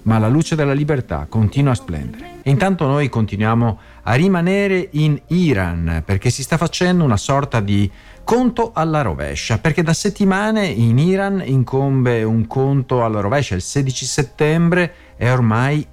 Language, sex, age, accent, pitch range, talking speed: Italian, male, 50-69, native, 110-145 Hz, 155 wpm